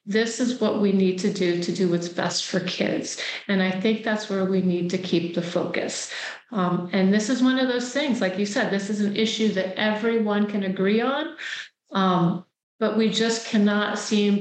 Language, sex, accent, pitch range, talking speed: English, female, American, 185-215 Hz, 210 wpm